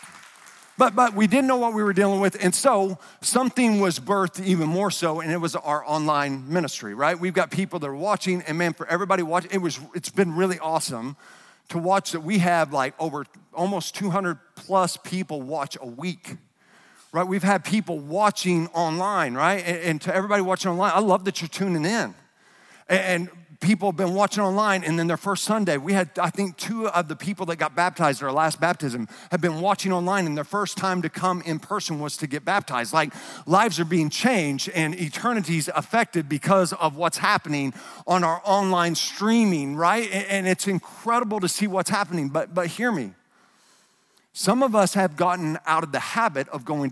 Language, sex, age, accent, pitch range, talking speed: English, male, 50-69, American, 160-195 Hz, 200 wpm